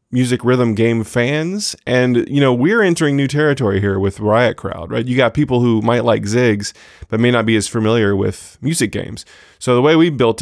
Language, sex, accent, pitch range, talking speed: English, male, American, 105-125 Hz, 215 wpm